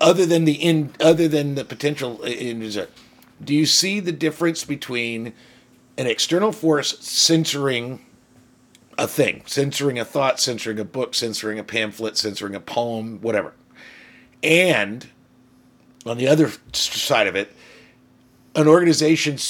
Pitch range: 125-170 Hz